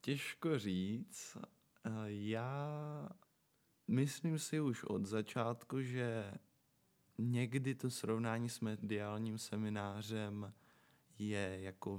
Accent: native